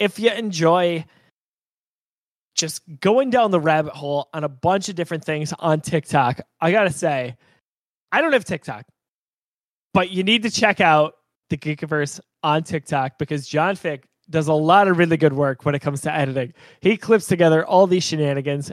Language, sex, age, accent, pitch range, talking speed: English, male, 20-39, American, 145-175 Hz, 180 wpm